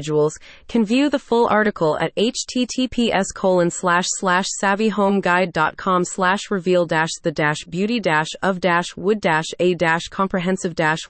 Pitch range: 175-230 Hz